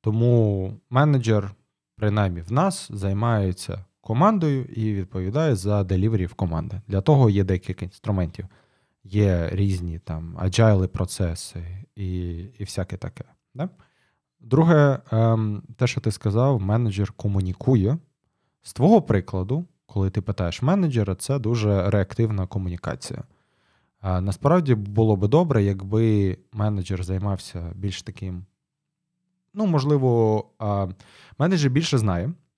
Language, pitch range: Ukrainian, 100-130 Hz